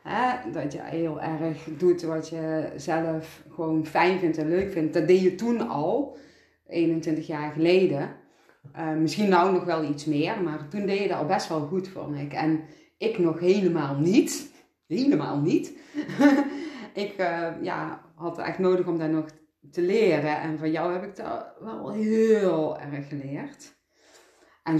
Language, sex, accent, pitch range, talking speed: Dutch, female, Dutch, 155-185 Hz, 165 wpm